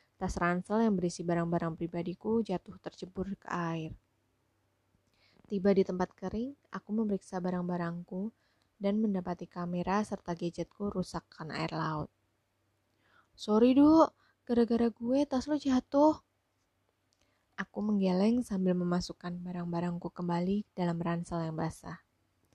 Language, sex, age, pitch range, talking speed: Indonesian, female, 20-39, 165-205 Hz, 110 wpm